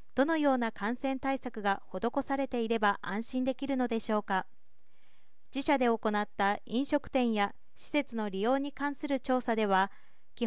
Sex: female